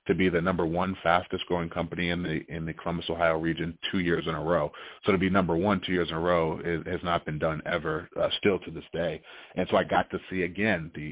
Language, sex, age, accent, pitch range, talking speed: English, male, 30-49, American, 80-90 Hz, 260 wpm